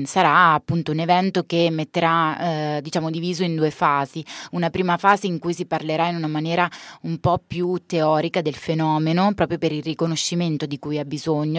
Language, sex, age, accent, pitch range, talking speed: Italian, female, 20-39, native, 155-175 Hz, 180 wpm